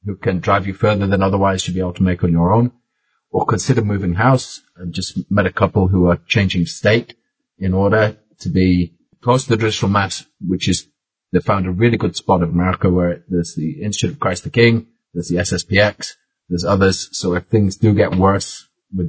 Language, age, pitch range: English, 30-49, 90-120 Hz